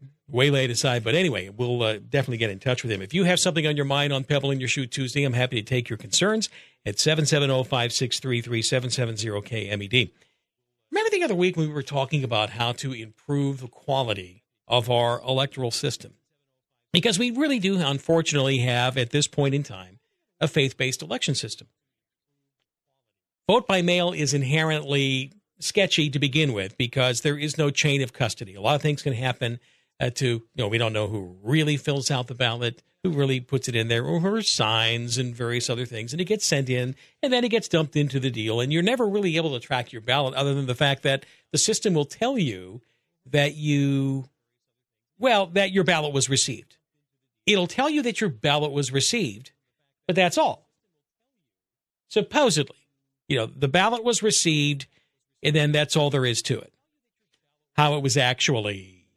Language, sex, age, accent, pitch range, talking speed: English, male, 50-69, American, 125-155 Hz, 200 wpm